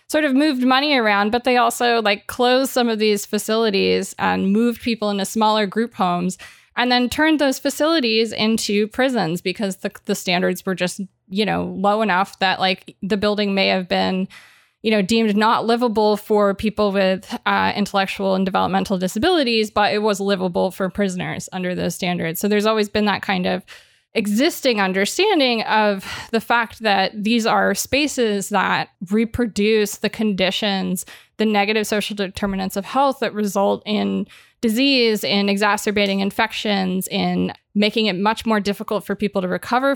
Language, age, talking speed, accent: English, 20-39, 165 wpm, American